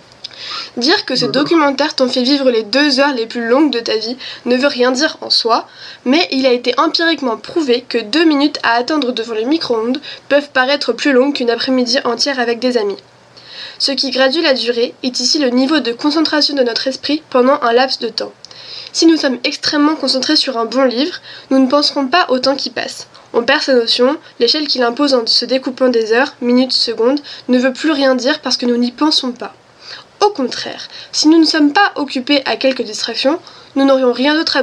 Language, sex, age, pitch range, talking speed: French, female, 20-39, 245-290 Hz, 215 wpm